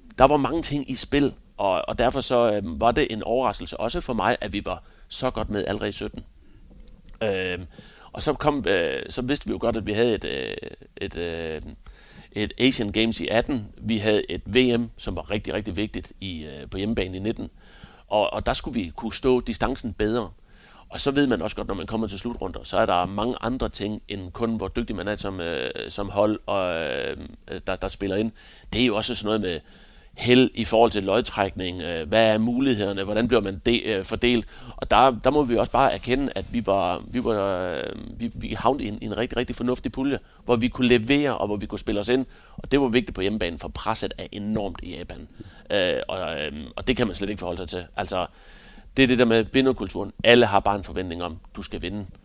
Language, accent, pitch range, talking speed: Danish, native, 95-120 Hz, 225 wpm